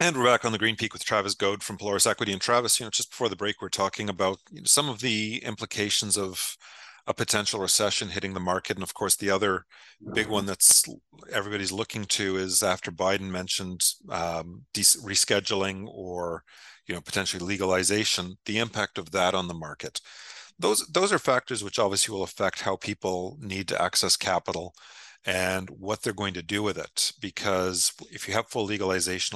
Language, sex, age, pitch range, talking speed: English, male, 40-59, 90-110 Hz, 195 wpm